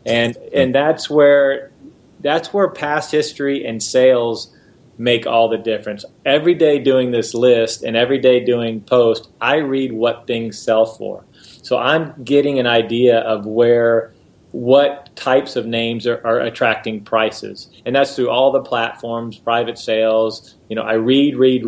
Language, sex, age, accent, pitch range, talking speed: English, male, 30-49, American, 115-135 Hz, 160 wpm